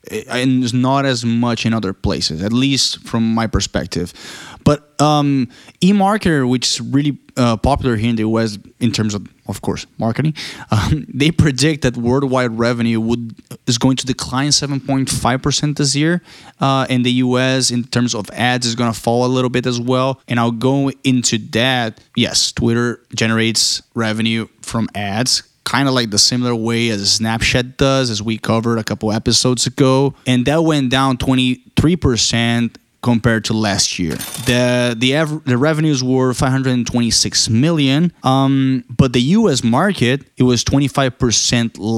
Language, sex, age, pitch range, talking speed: Spanish, male, 20-39, 115-140 Hz, 160 wpm